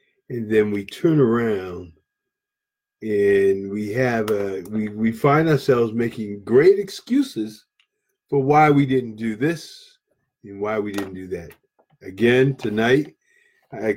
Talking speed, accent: 135 wpm, American